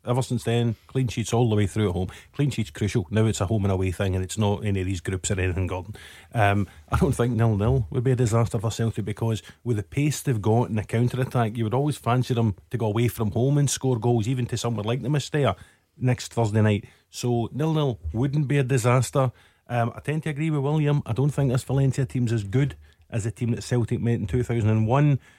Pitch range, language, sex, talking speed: 110-130 Hz, English, male, 245 wpm